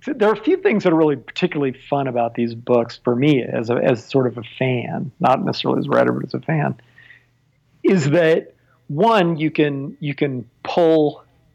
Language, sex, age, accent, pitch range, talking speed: English, male, 40-59, American, 125-150 Hz, 205 wpm